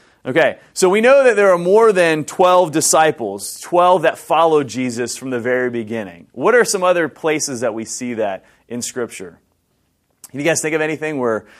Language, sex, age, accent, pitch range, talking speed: English, male, 30-49, American, 120-155 Hz, 190 wpm